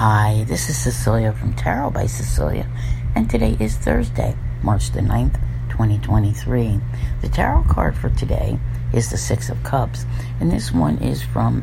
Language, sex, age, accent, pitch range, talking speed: English, female, 60-79, American, 110-125 Hz, 160 wpm